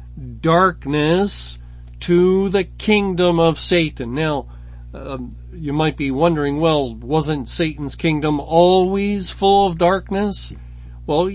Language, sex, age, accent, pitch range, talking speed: English, male, 50-69, American, 130-170 Hz, 110 wpm